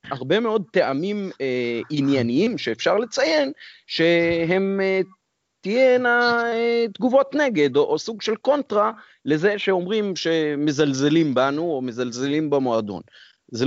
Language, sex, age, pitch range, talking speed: Hebrew, male, 30-49, 125-175 Hz, 115 wpm